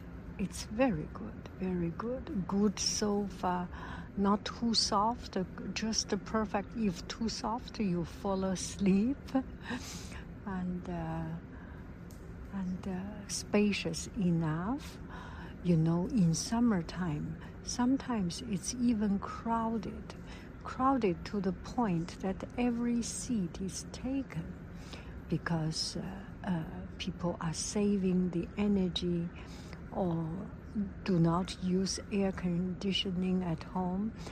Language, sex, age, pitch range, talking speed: English, female, 60-79, 165-205 Hz, 100 wpm